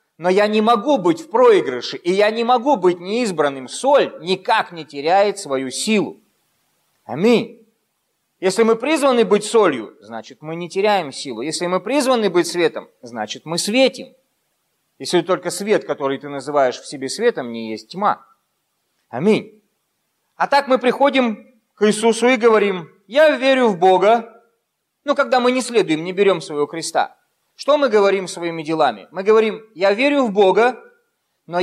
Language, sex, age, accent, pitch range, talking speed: Russian, male, 30-49, native, 160-240 Hz, 160 wpm